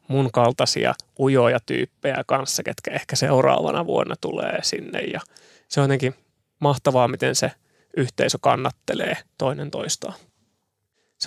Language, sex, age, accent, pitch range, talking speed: Finnish, male, 20-39, native, 125-150 Hz, 120 wpm